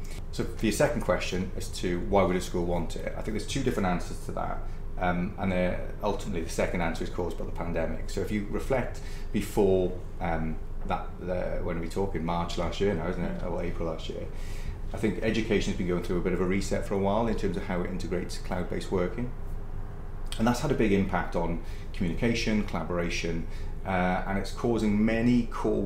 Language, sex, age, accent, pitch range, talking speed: English, male, 30-49, British, 85-105 Hz, 215 wpm